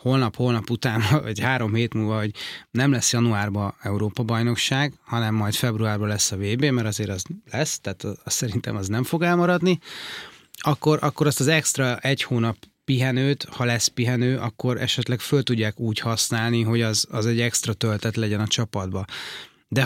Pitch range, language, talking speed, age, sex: 110-135 Hz, Hungarian, 165 wpm, 30-49, male